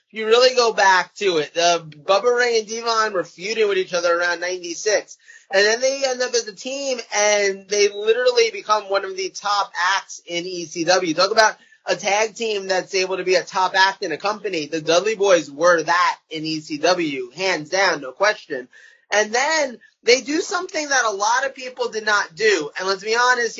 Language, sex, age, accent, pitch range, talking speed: English, male, 20-39, American, 185-240 Hz, 205 wpm